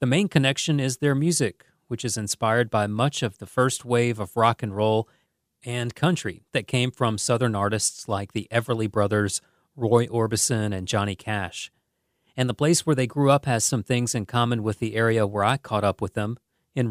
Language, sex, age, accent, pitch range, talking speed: English, male, 40-59, American, 110-125 Hz, 200 wpm